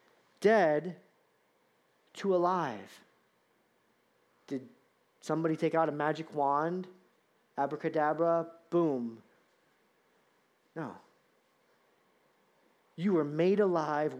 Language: English